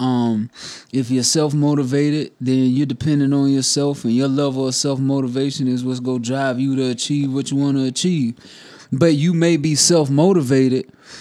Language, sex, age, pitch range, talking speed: English, male, 20-39, 130-150 Hz, 170 wpm